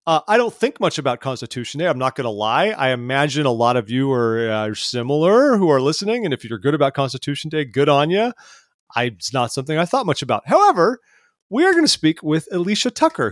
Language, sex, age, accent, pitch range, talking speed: English, male, 30-49, American, 120-160 Hz, 235 wpm